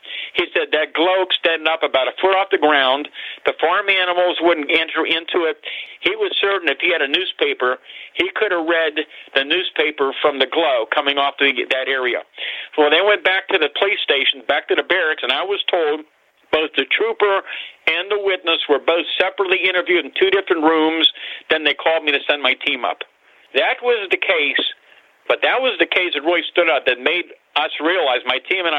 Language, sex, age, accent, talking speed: English, male, 50-69, American, 215 wpm